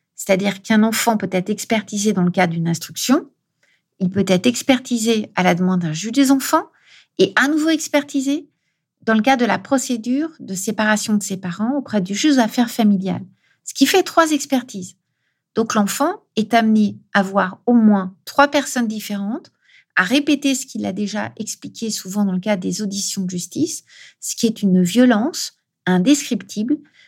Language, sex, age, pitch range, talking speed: French, female, 50-69, 185-250 Hz, 175 wpm